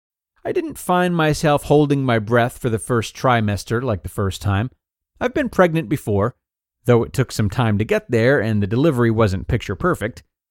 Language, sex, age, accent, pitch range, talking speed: English, male, 30-49, American, 105-160 Hz, 190 wpm